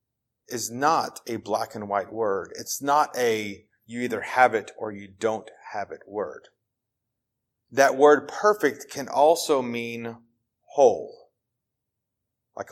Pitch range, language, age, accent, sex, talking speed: 115-135 Hz, English, 30-49, American, male, 130 wpm